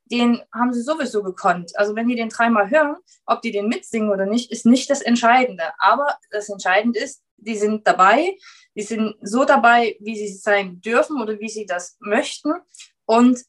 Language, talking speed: German, 185 wpm